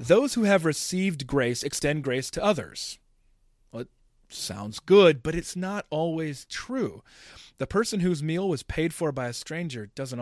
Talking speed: 170 wpm